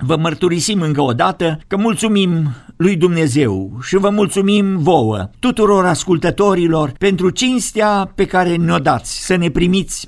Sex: male